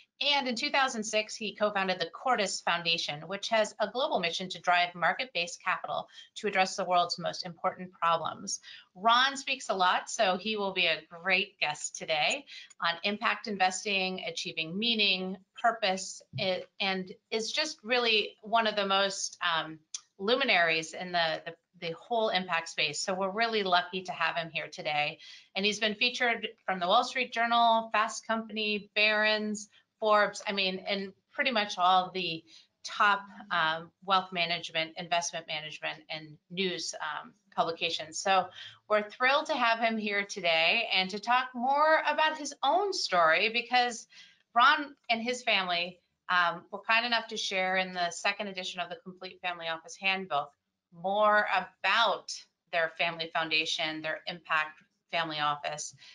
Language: English